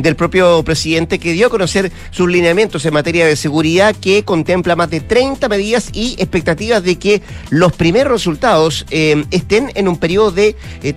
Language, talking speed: Spanish, 180 wpm